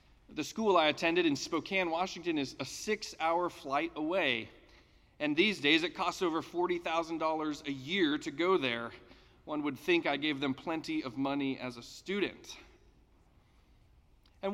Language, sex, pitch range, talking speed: English, male, 130-185 Hz, 155 wpm